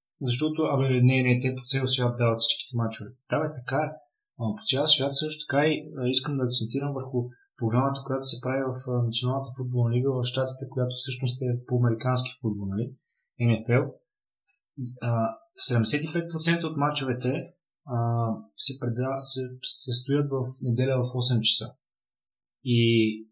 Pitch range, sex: 120-140 Hz, male